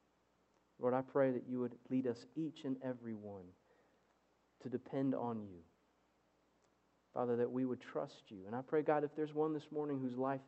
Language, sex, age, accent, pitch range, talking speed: English, male, 40-59, American, 105-135 Hz, 190 wpm